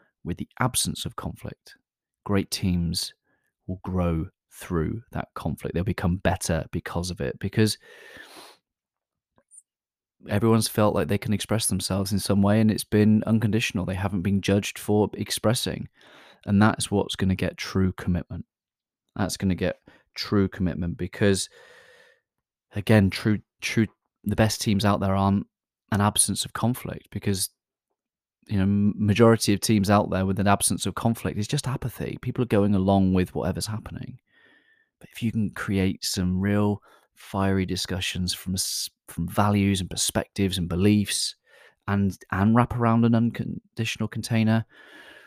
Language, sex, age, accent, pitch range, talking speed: English, male, 30-49, British, 95-110 Hz, 150 wpm